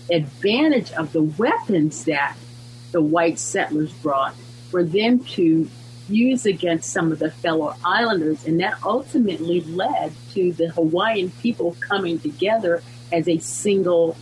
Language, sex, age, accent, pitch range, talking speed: English, female, 50-69, American, 120-175 Hz, 135 wpm